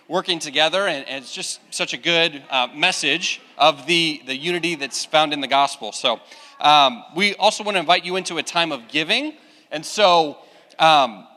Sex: male